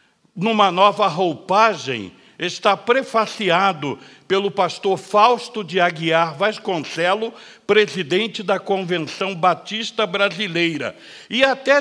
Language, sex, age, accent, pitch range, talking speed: Portuguese, male, 60-79, Brazilian, 165-225 Hz, 90 wpm